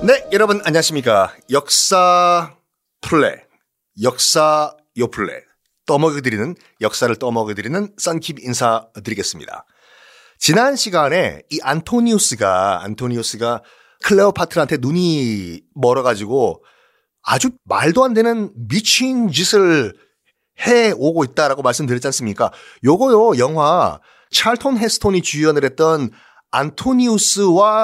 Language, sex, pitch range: Korean, male, 145-235 Hz